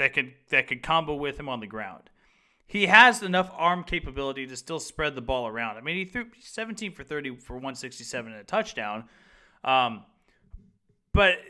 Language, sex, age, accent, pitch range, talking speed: English, male, 30-49, American, 135-180 Hz, 185 wpm